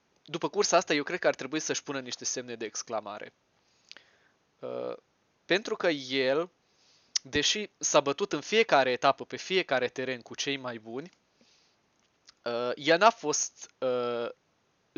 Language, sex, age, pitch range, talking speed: Romanian, male, 20-39, 125-165 Hz, 145 wpm